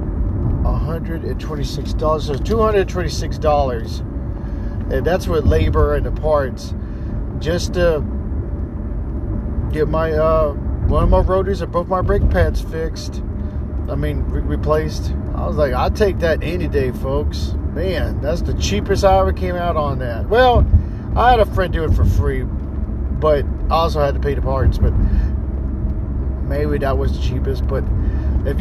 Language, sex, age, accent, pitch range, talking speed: English, male, 40-59, American, 75-100 Hz, 155 wpm